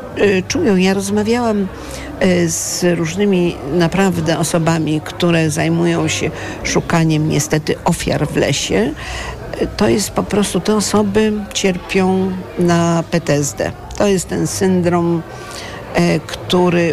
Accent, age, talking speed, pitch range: native, 50-69, 100 wpm, 155-190 Hz